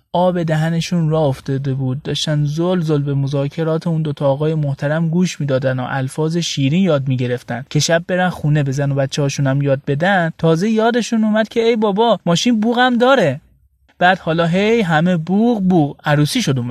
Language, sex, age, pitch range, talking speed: Persian, male, 30-49, 140-175 Hz, 175 wpm